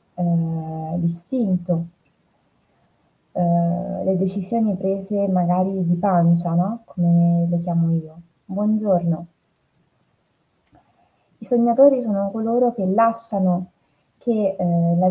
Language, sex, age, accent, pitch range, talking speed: Italian, female, 20-39, native, 175-210 Hz, 80 wpm